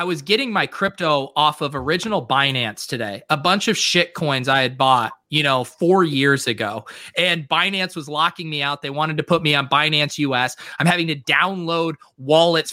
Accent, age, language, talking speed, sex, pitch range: American, 30-49, English, 200 wpm, male, 145-175 Hz